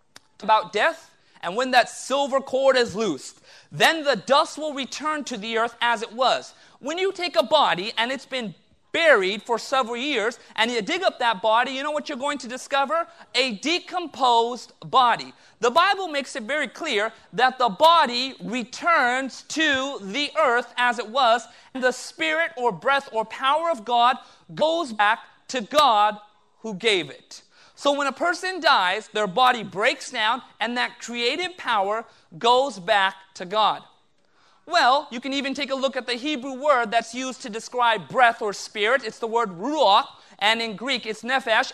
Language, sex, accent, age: English, male, American, 30-49